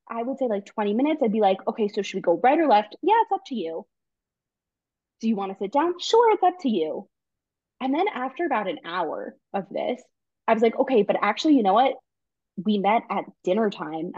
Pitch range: 190-270 Hz